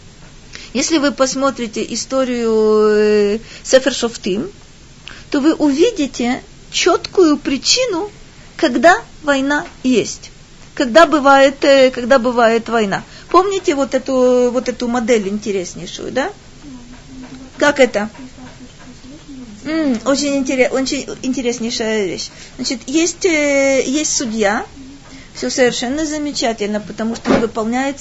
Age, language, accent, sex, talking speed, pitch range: 40-59, Russian, native, female, 90 wpm, 245-310 Hz